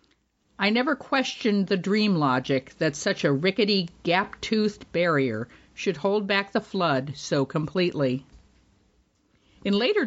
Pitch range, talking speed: 170-220 Hz, 125 wpm